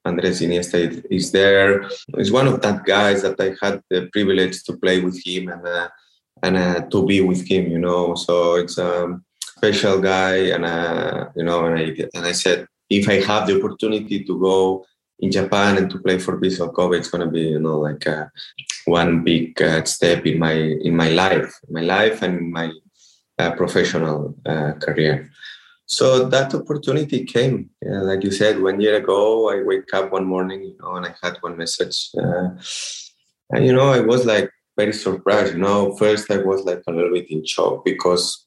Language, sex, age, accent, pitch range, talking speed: English, male, 20-39, Spanish, 85-100 Hz, 195 wpm